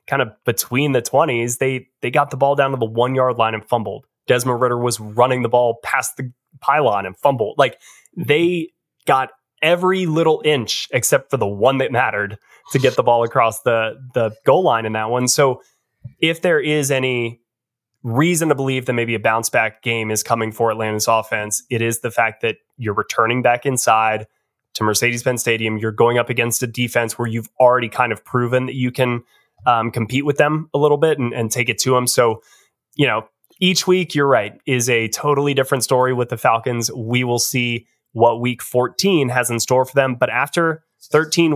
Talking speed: 200 wpm